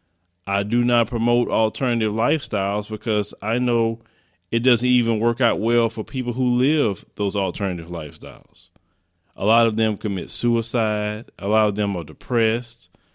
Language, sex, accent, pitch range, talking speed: English, male, American, 95-120 Hz, 155 wpm